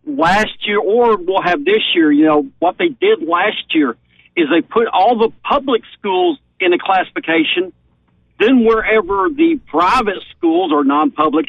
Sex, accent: male, American